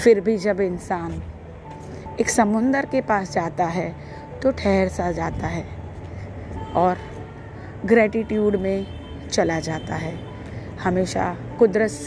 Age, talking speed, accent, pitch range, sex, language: 30-49, 115 wpm, native, 140-230 Hz, female, Hindi